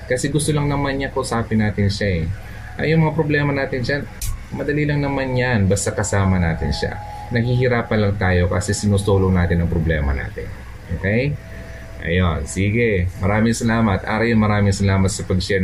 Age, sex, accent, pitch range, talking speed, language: 20-39, male, native, 95-110 Hz, 165 wpm, Filipino